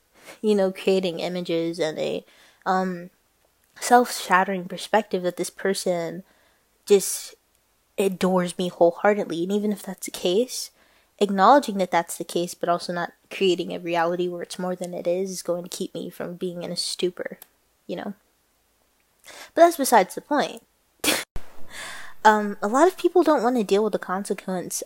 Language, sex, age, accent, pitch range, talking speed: English, female, 20-39, American, 180-215 Hz, 165 wpm